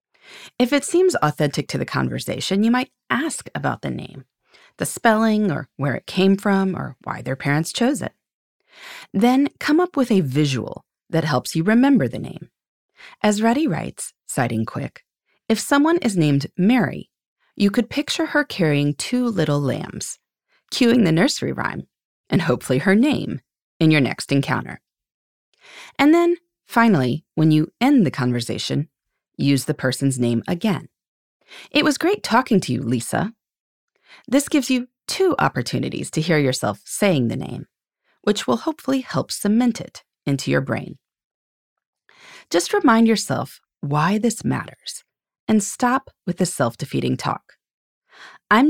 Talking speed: 150 wpm